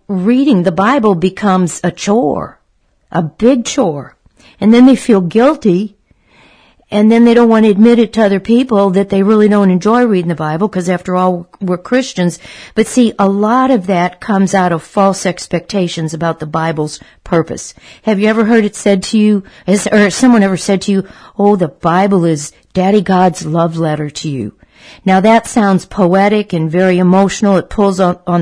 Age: 60-79